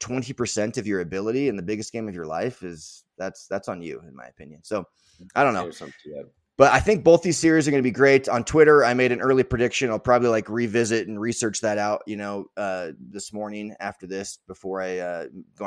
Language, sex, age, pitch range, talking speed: English, male, 20-39, 100-120 Hz, 225 wpm